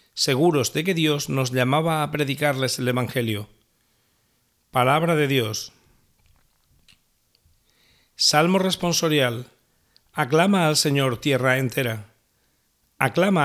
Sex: male